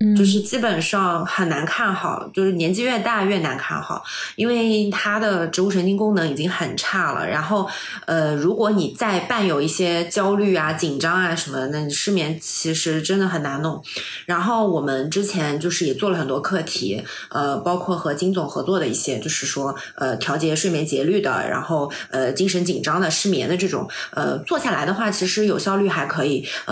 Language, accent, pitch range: Chinese, native, 160-205 Hz